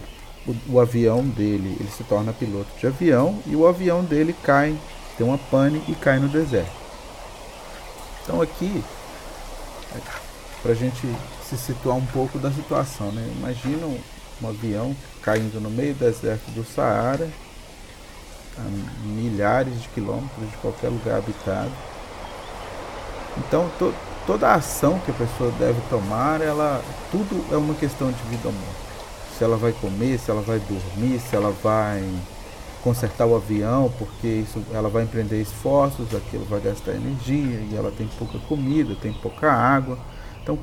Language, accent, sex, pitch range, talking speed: Portuguese, Brazilian, male, 105-135 Hz, 150 wpm